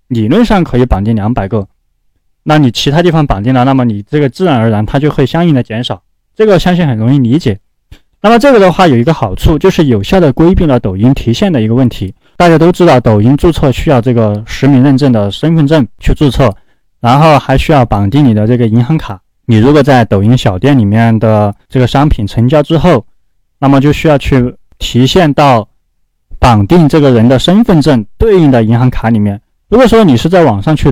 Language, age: Chinese, 20-39